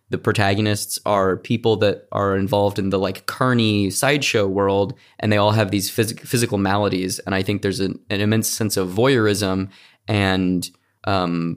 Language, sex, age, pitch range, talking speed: English, male, 20-39, 100-120 Hz, 170 wpm